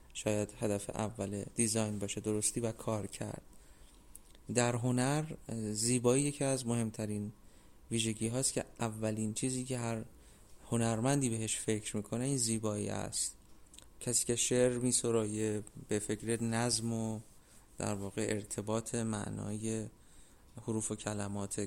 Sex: male